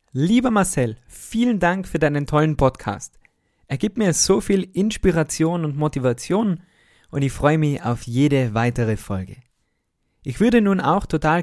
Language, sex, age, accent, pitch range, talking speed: German, male, 20-39, German, 115-155 Hz, 150 wpm